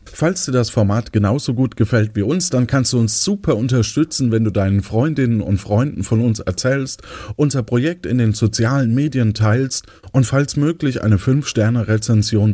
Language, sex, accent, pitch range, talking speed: German, male, German, 105-130 Hz, 170 wpm